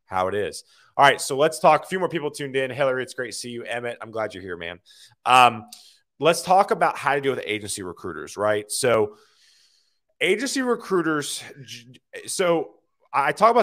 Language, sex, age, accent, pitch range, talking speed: English, male, 30-49, American, 110-175 Hz, 195 wpm